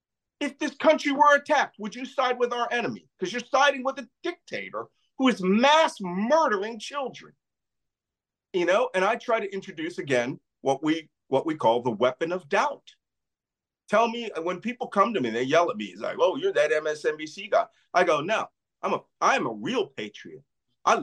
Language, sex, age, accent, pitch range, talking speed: English, male, 50-69, American, 165-255 Hz, 190 wpm